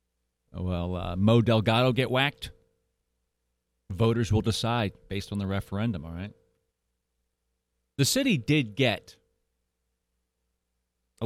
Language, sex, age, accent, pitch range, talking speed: English, male, 40-59, American, 85-140 Hz, 105 wpm